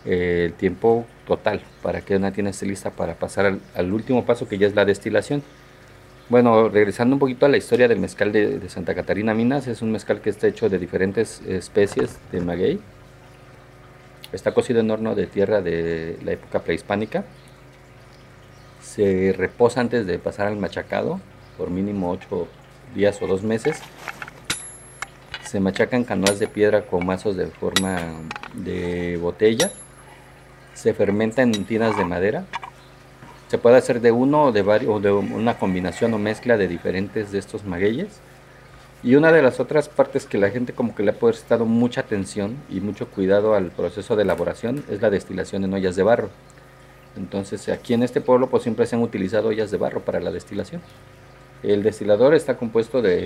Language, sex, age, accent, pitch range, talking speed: Spanish, male, 40-59, Mexican, 100-125 Hz, 175 wpm